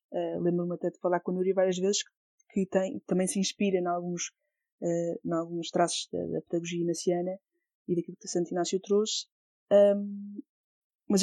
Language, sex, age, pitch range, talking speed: Portuguese, female, 20-39, 180-205 Hz, 175 wpm